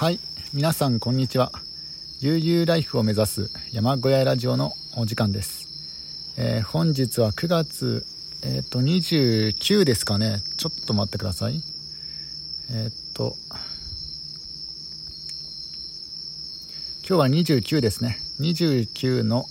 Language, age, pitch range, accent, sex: Japanese, 50-69, 110-155 Hz, native, male